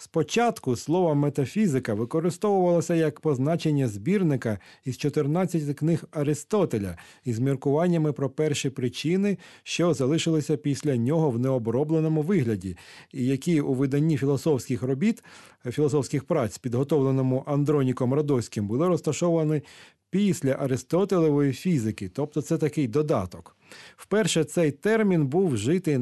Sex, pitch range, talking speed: male, 125-160 Hz, 110 wpm